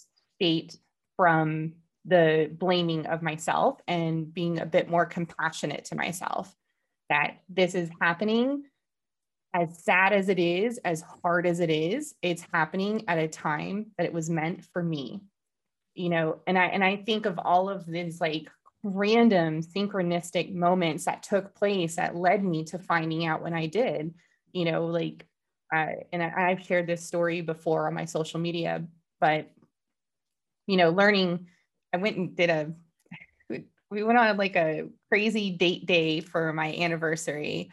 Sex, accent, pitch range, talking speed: female, American, 160-180 Hz, 160 wpm